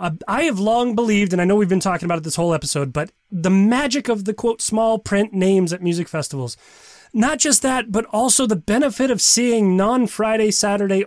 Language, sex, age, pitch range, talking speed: English, male, 30-49, 170-235 Hz, 200 wpm